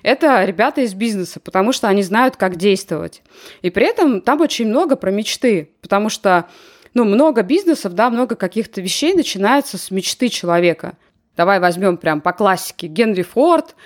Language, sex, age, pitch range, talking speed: Russian, female, 20-39, 190-260 Hz, 165 wpm